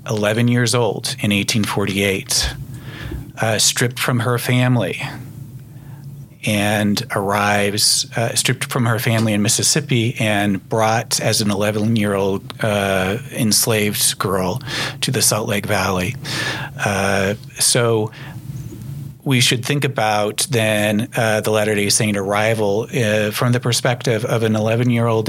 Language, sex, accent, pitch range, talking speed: English, male, American, 105-130 Hz, 125 wpm